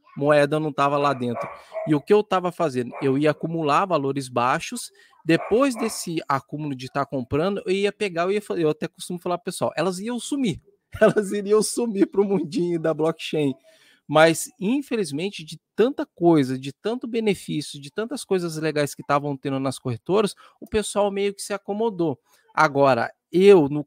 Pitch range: 145-200 Hz